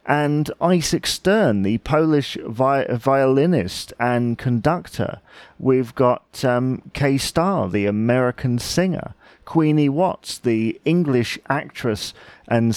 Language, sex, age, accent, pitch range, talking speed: English, male, 40-59, British, 115-155 Hz, 105 wpm